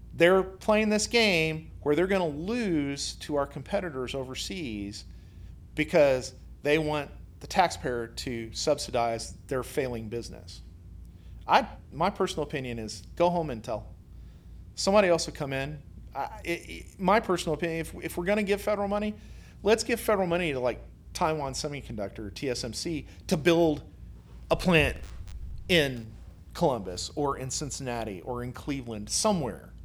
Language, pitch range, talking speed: English, 105-170 Hz, 145 wpm